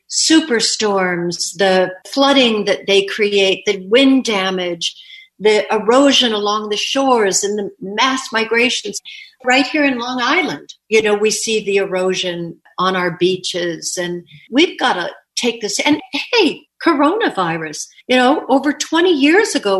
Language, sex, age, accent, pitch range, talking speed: English, female, 50-69, American, 190-250 Hz, 140 wpm